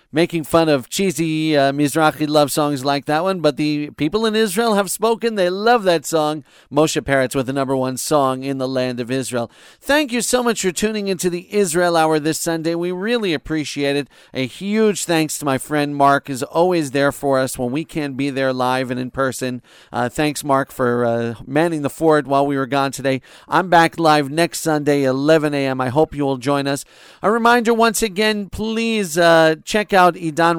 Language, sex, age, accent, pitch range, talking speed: English, male, 40-59, American, 140-170 Hz, 210 wpm